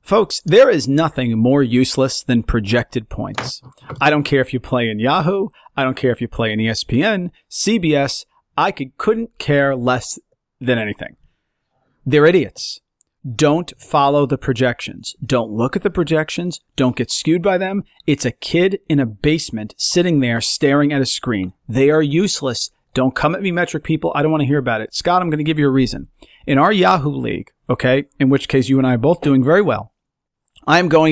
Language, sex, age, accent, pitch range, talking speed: English, male, 40-59, American, 130-170 Hz, 200 wpm